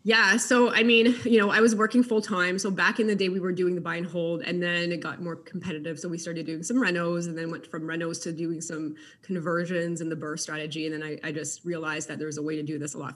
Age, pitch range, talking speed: 20-39, 155-180 Hz, 290 wpm